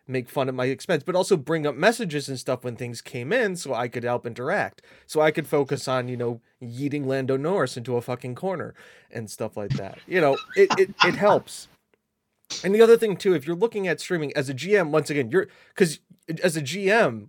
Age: 30-49